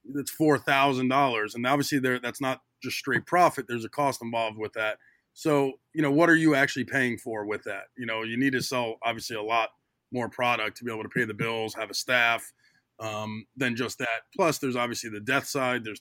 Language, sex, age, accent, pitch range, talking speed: English, male, 20-39, American, 115-135 Hz, 220 wpm